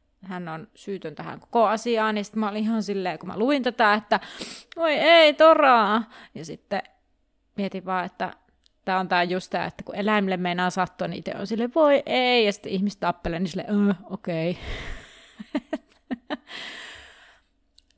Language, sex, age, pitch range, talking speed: Finnish, female, 30-49, 185-230 Hz, 160 wpm